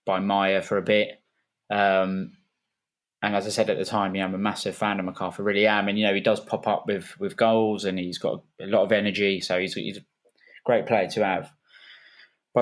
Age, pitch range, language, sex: 20-39, 95-110 Hz, English, male